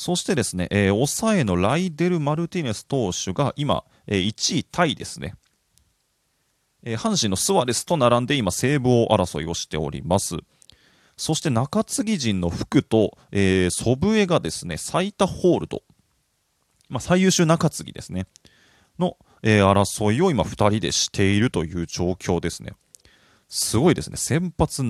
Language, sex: Japanese, male